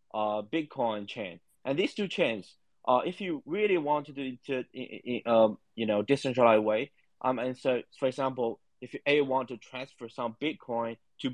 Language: English